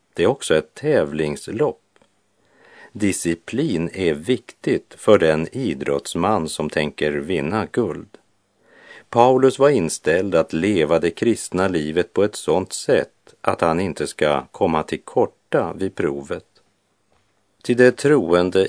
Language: English